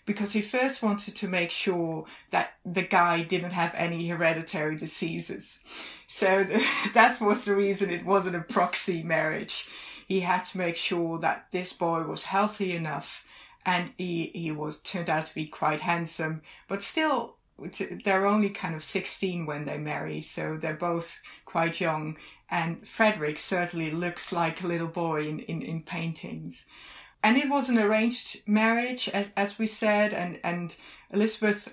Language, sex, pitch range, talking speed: English, female, 165-200 Hz, 165 wpm